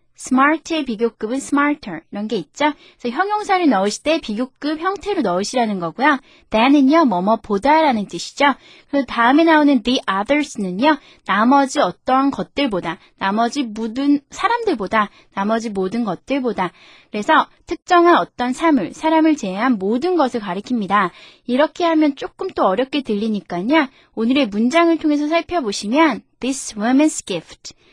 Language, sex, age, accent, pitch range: Korean, female, 20-39, native, 210-305 Hz